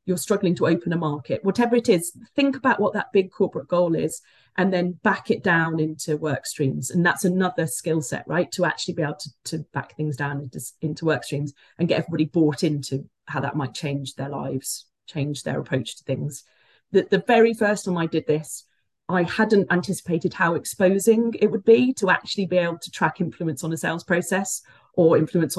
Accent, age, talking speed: British, 30-49, 210 wpm